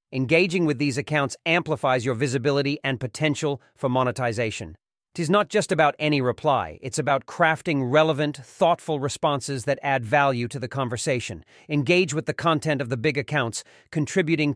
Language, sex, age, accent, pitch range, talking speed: English, male, 40-59, American, 130-155 Hz, 160 wpm